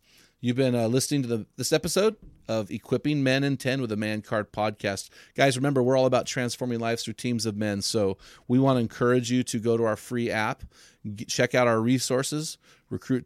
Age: 30-49